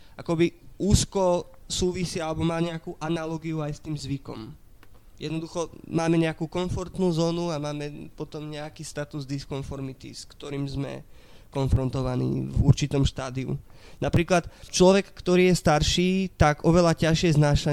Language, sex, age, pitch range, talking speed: Slovak, male, 20-39, 145-170 Hz, 130 wpm